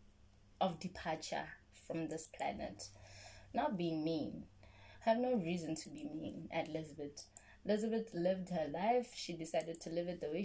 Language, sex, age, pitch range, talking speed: English, female, 20-39, 150-200 Hz, 155 wpm